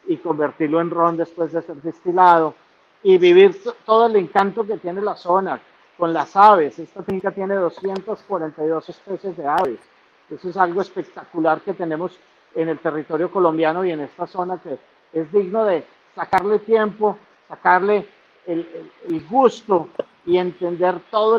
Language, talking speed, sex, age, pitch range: Spanish, 150 wpm, male, 50-69, 155-195 Hz